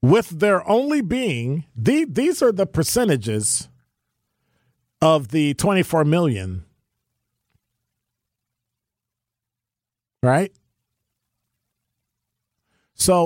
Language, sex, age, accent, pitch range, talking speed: English, male, 50-69, American, 115-160 Hz, 65 wpm